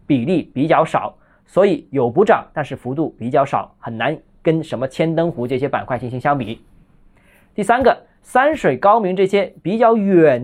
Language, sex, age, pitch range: Chinese, male, 20-39, 140-190 Hz